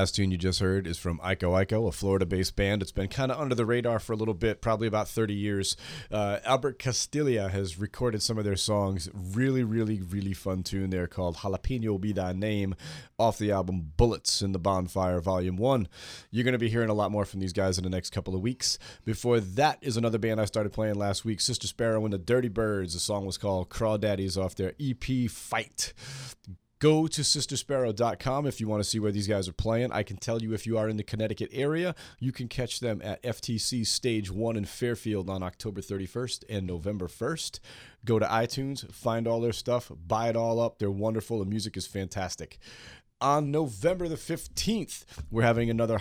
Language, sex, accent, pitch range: English, male, American, 95-120 Hz